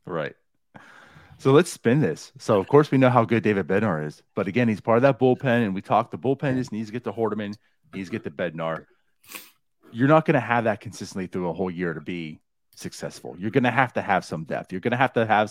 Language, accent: English, American